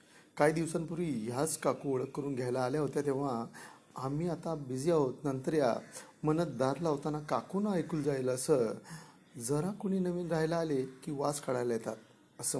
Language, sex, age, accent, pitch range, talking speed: Marathi, male, 40-59, native, 130-165 Hz, 145 wpm